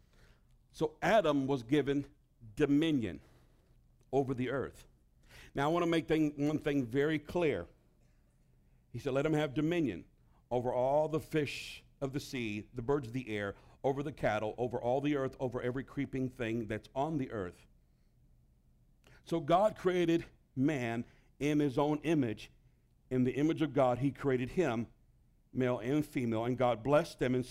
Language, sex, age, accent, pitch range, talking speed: English, male, 60-79, American, 125-150 Hz, 160 wpm